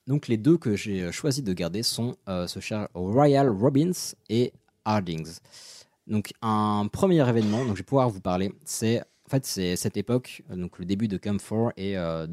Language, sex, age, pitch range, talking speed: French, male, 20-39, 95-130 Hz, 195 wpm